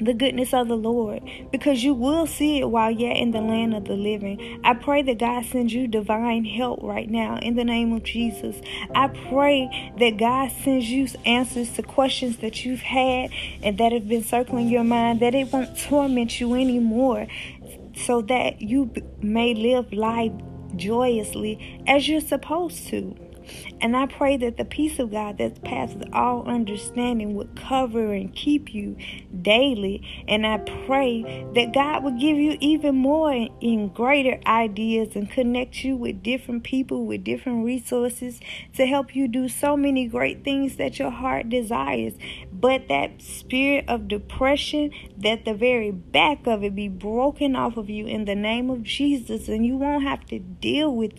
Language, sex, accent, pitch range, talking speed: English, female, American, 215-260 Hz, 175 wpm